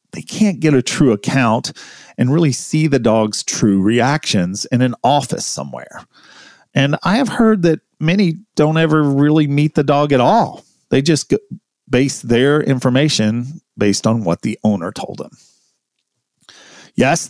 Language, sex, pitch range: English, male, 115-155 Hz